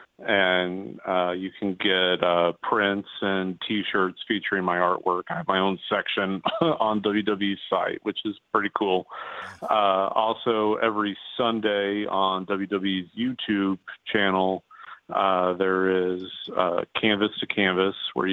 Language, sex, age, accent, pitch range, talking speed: English, male, 40-59, American, 90-105 Hz, 130 wpm